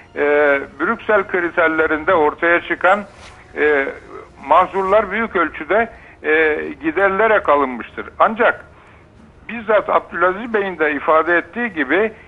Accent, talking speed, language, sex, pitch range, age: native, 100 wpm, Turkish, male, 150-205 Hz, 60-79